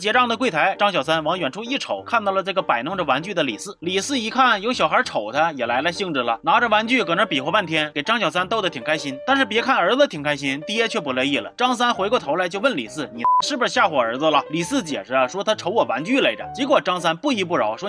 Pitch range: 175-255 Hz